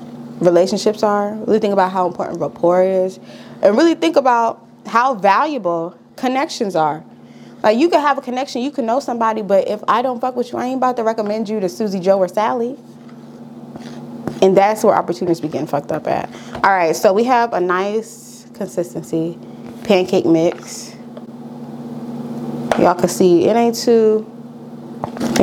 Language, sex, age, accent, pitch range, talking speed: English, female, 20-39, American, 180-240 Hz, 165 wpm